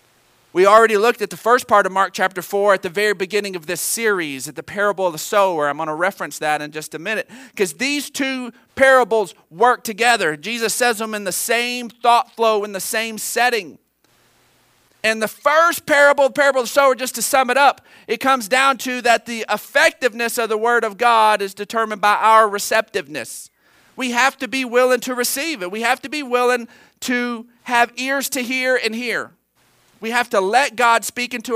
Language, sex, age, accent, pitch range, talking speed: English, male, 40-59, American, 195-250 Hz, 205 wpm